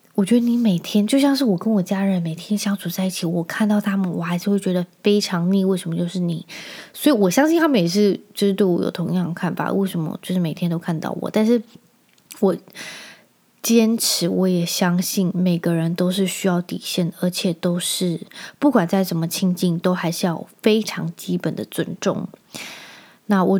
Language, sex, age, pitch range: Chinese, female, 20-39, 175-210 Hz